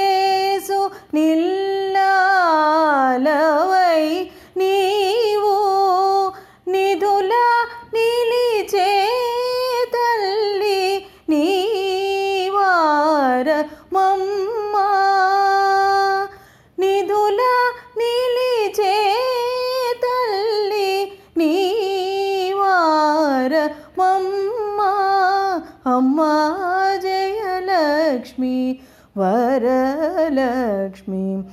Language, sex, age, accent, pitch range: Telugu, female, 20-39, native, 300-390 Hz